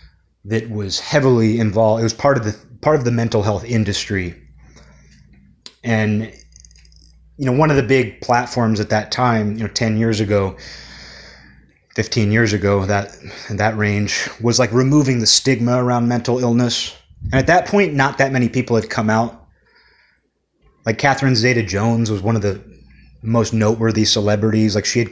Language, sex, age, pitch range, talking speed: English, male, 30-49, 105-125 Hz, 165 wpm